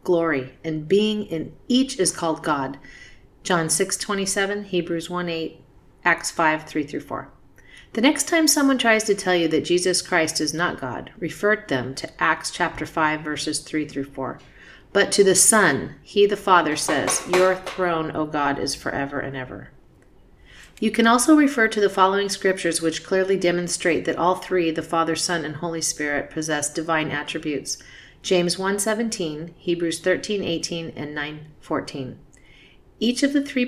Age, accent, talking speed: 40-59, American, 165 wpm